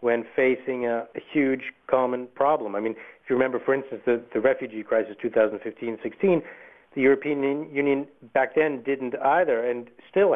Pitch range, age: 115-150 Hz, 60-79